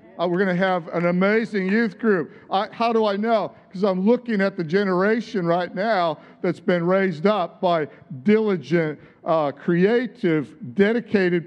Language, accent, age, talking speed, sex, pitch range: English, American, 50-69, 155 wpm, male, 175-210 Hz